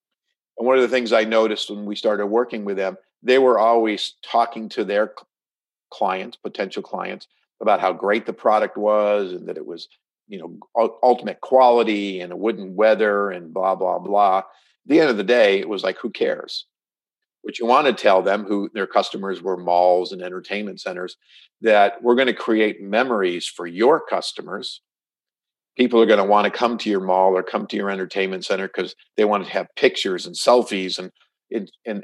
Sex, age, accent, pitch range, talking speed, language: male, 50-69, American, 95-115 Hz, 195 wpm, English